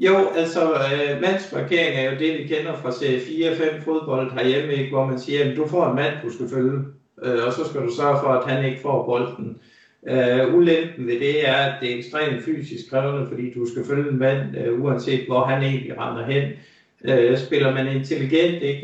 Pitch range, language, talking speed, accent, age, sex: 130-160 Hz, Danish, 215 wpm, native, 60-79, male